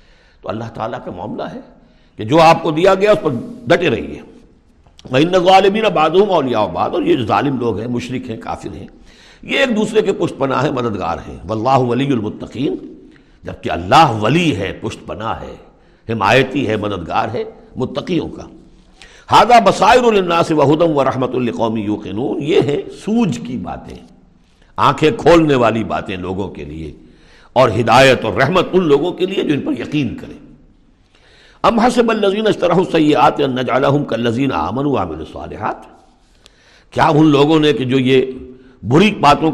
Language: Urdu